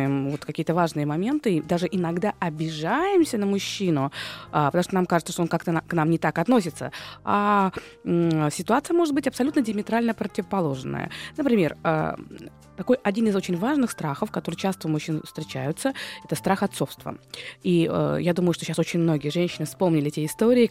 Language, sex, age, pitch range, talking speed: Russian, female, 20-39, 160-215 Hz, 150 wpm